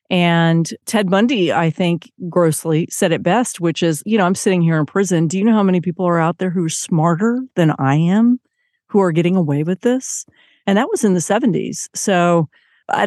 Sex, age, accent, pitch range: female, 40-59, American, 170-200 Hz